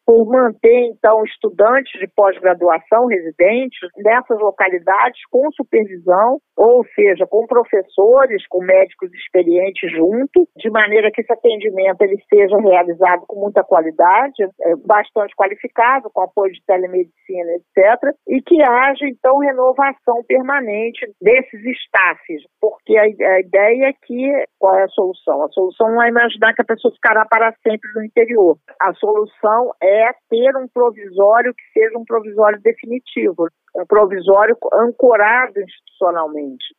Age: 50-69